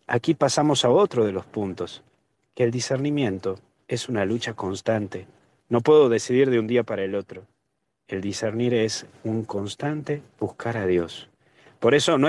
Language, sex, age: Spanish, male, 40-59